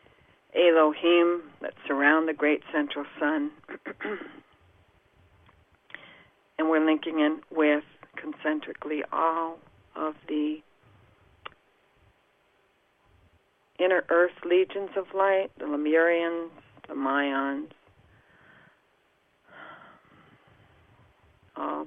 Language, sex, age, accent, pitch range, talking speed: English, female, 60-79, American, 150-175 Hz, 70 wpm